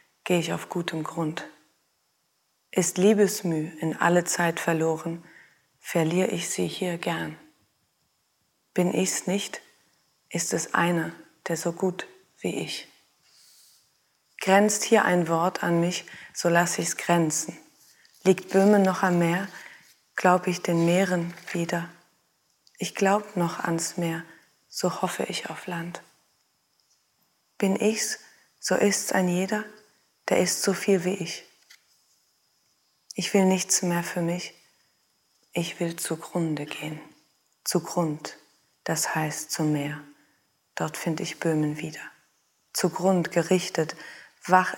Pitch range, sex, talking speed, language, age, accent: 165-185 Hz, female, 125 wpm, English, 30-49, German